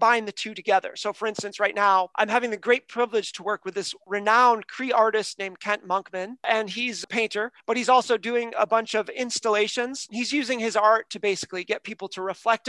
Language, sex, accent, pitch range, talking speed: English, male, American, 205-245 Hz, 220 wpm